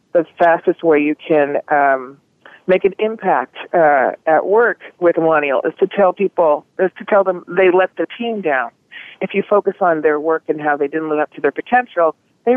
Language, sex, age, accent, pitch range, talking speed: English, female, 40-59, American, 155-220 Hz, 210 wpm